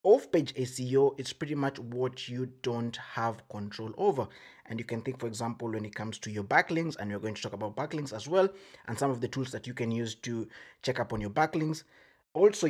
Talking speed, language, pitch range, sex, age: 225 wpm, English, 120-145 Hz, male, 20-39